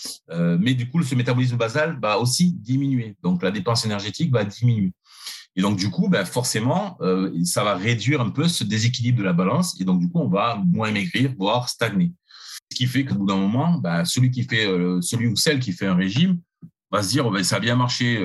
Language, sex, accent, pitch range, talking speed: French, male, French, 110-160 Hz, 220 wpm